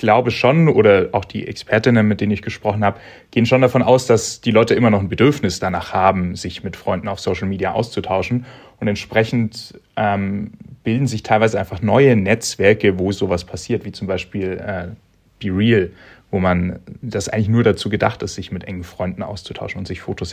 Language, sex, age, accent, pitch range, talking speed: German, male, 30-49, German, 95-115 Hz, 190 wpm